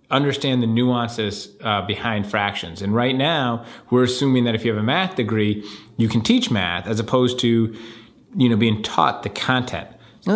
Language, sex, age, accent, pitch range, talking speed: English, male, 30-49, American, 105-120 Hz, 185 wpm